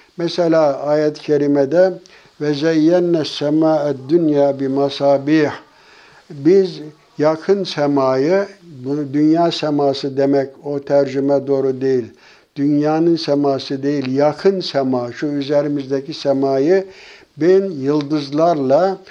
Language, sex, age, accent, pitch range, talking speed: Turkish, male, 60-79, native, 140-170 Hz, 90 wpm